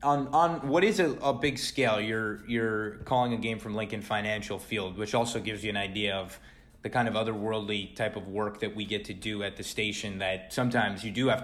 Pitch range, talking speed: 105-125 Hz, 230 wpm